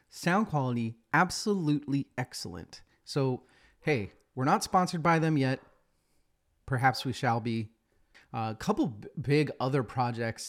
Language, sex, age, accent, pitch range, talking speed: English, male, 30-49, American, 125-155 Hz, 125 wpm